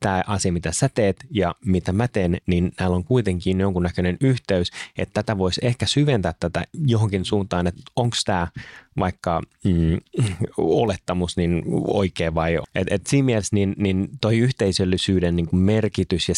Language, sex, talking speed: Finnish, male, 155 wpm